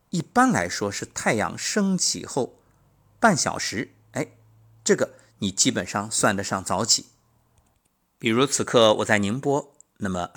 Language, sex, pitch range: Chinese, male, 100-135 Hz